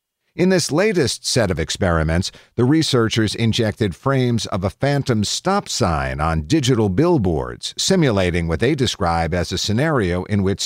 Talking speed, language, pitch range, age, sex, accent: 150 wpm, English, 90-130 Hz, 50-69, male, American